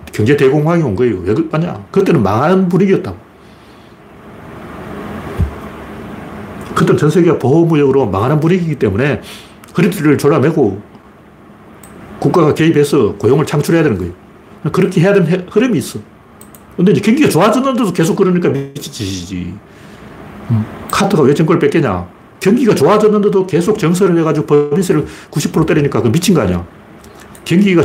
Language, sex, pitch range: Korean, male, 125-185 Hz